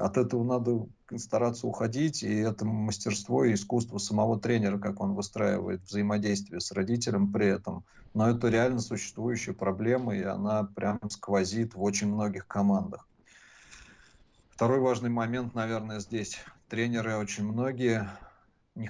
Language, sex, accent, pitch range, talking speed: Russian, male, native, 100-115 Hz, 135 wpm